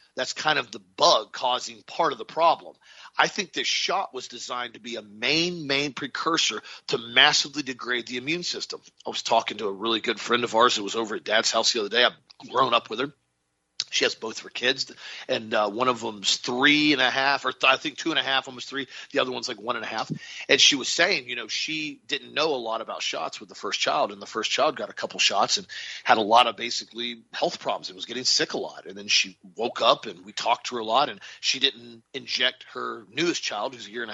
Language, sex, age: English, male, 40-59